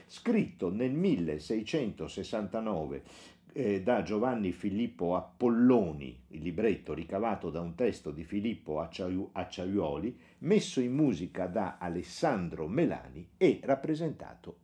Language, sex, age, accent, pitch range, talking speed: Italian, male, 50-69, native, 85-115 Hz, 105 wpm